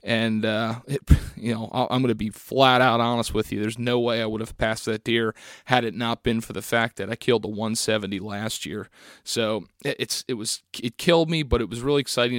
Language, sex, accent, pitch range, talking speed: English, male, American, 110-125 Hz, 230 wpm